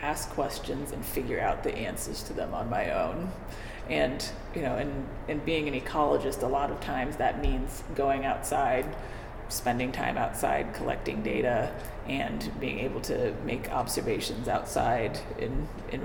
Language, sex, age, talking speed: English, female, 30-49, 155 wpm